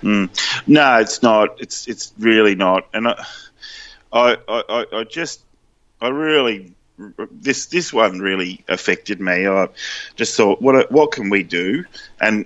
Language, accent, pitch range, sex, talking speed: English, Australian, 95-115 Hz, male, 150 wpm